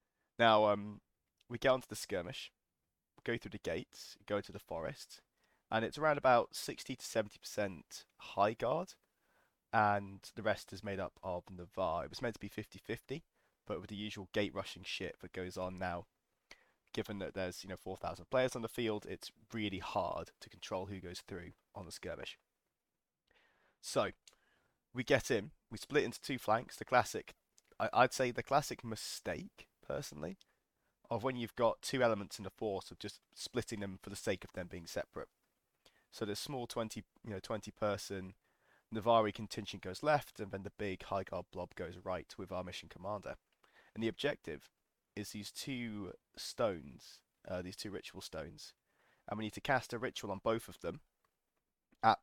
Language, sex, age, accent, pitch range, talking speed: English, male, 20-39, British, 95-115 Hz, 180 wpm